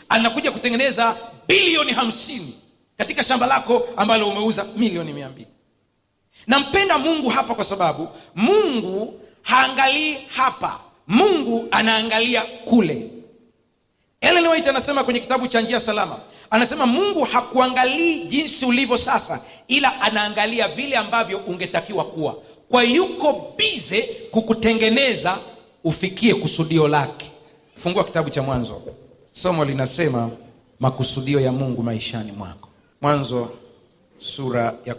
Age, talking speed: 40-59, 105 wpm